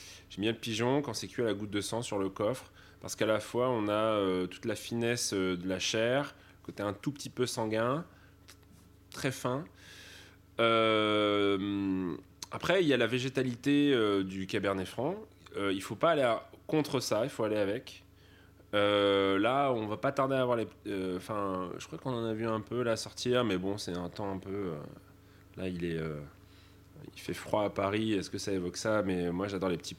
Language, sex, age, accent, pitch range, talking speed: French, male, 20-39, French, 95-110 Hz, 215 wpm